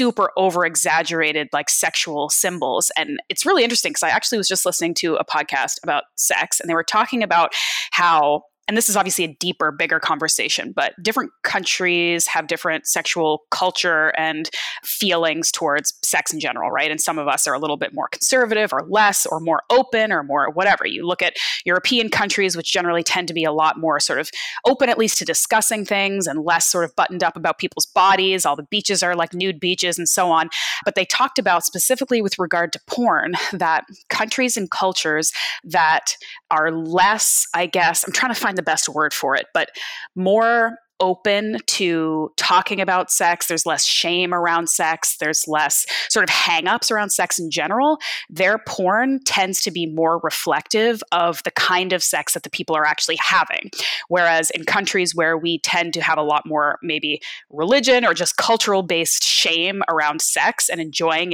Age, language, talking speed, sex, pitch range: 20-39, English, 190 wpm, female, 160-205 Hz